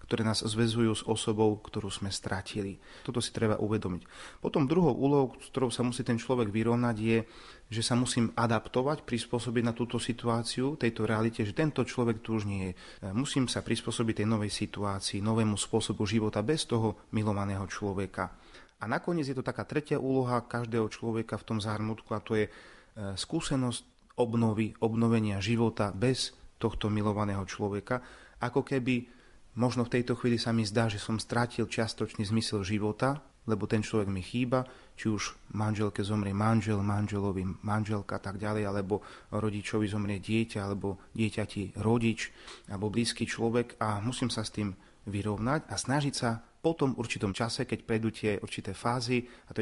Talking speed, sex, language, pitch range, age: 165 wpm, male, Slovak, 105-120 Hz, 30-49